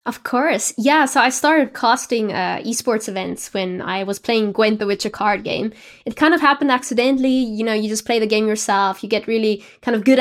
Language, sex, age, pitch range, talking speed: English, female, 20-39, 200-235 Hz, 225 wpm